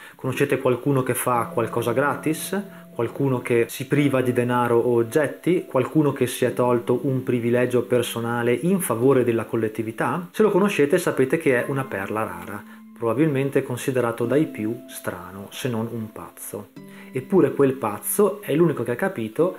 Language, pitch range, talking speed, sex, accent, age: Italian, 120-155 Hz, 160 wpm, male, native, 30-49